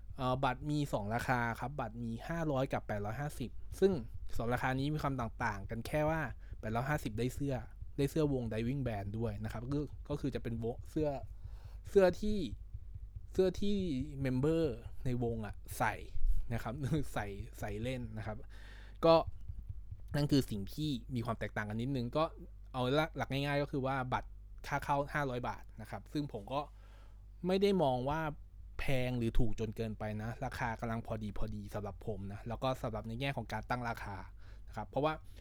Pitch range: 100-140 Hz